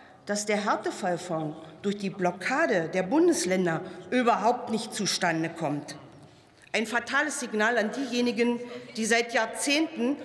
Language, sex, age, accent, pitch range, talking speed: German, female, 40-59, German, 190-255 Hz, 115 wpm